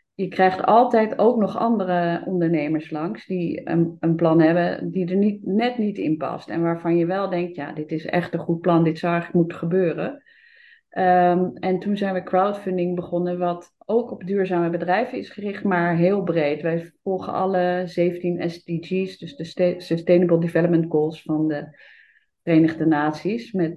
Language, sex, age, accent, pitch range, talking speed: Dutch, female, 30-49, Dutch, 165-180 Hz, 175 wpm